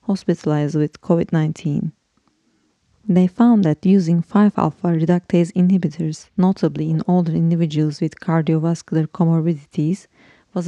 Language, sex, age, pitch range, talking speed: English, female, 30-49, 160-190 Hz, 95 wpm